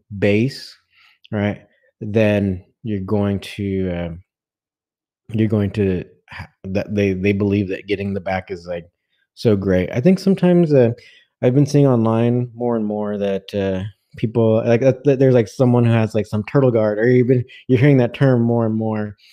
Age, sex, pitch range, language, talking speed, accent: 20-39, male, 100-120 Hz, English, 175 wpm, American